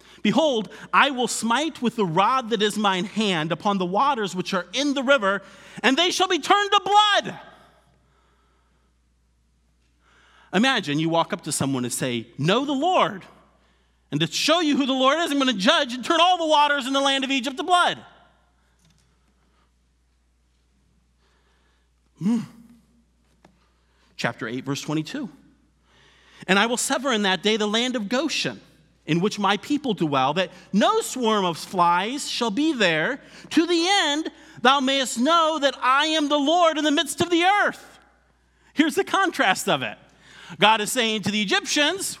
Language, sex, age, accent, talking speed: English, male, 40-59, American, 170 wpm